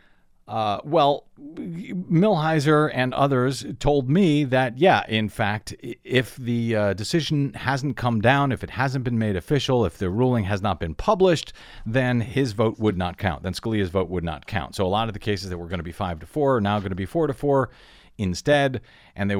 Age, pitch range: 40-59, 105-160 Hz